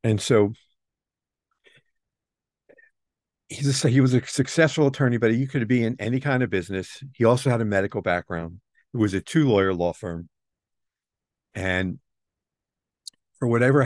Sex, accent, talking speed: male, American, 140 wpm